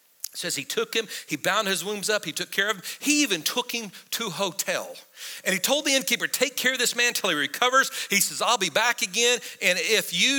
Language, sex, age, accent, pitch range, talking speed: English, male, 50-69, American, 195-250 Hz, 255 wpm